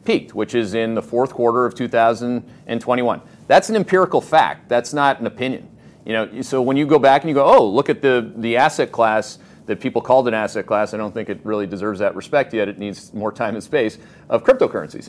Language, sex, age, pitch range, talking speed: English, male, 40-59, 110-130 Hz, 225 wpm